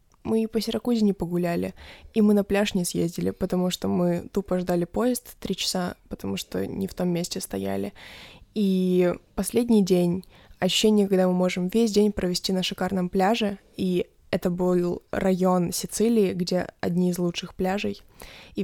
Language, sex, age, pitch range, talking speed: Ukrainian, female, 20-39, 180-205 Hz, 165 wpm